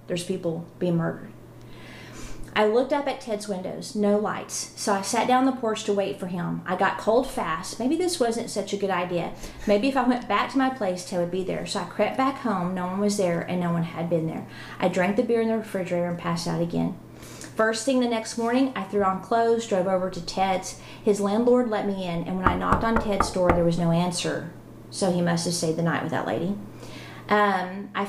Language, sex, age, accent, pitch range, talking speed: English, female, 40-59, American, 180-220 Hz, 240 wpm